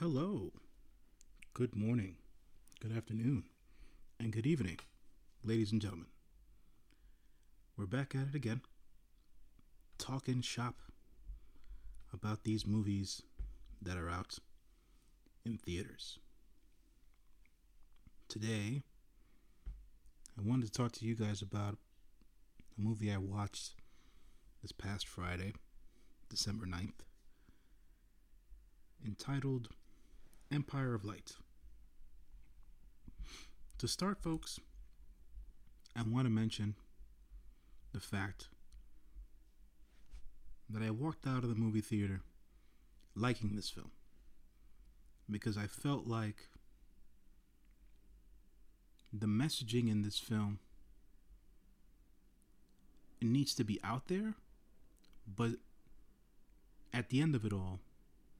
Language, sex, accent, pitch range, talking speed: English, male, American, 80-115 Hz, 90 wpm